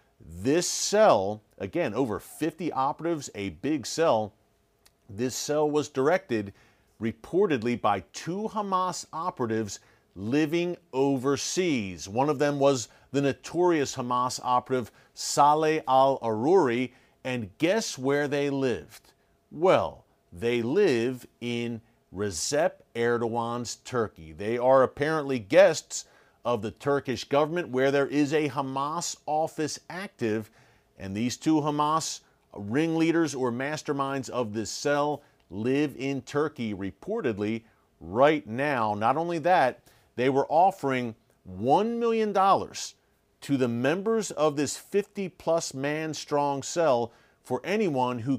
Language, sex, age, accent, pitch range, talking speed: English, male, 40-59, American, 115-150 Hz, 115 wpm